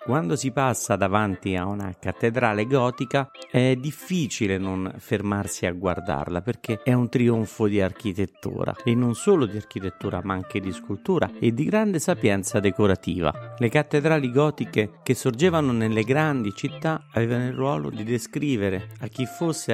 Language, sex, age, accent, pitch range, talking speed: Italian, male, 50-69, native, 105-140 Hz, 150 wpm